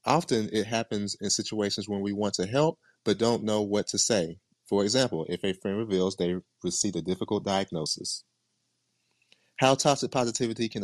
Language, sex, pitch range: English, male, 100-130 Hz